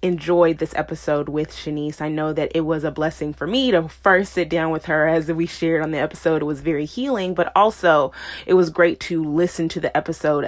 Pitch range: 160-190 Hz